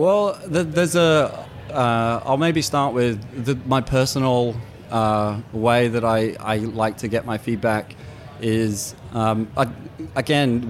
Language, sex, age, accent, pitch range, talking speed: English, male, 20-39, British, 115-135 Hz, 130 wpm